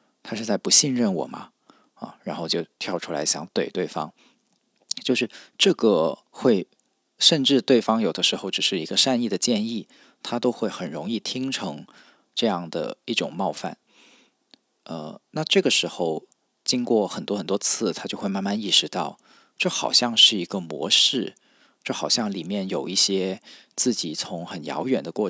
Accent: native